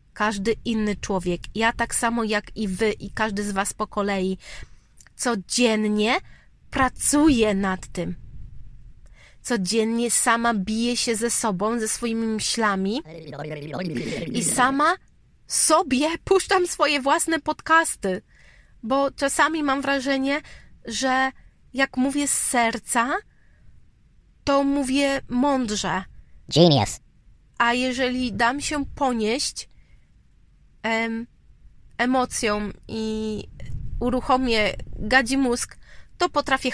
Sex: female